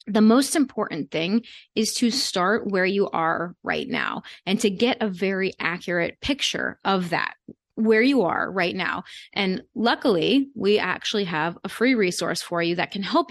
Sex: female